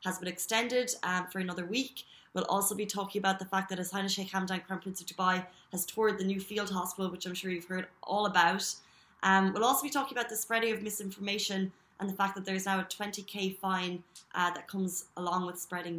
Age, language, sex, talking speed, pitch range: 20-39, Arabic, female, 225 wpm, 185-215 Hz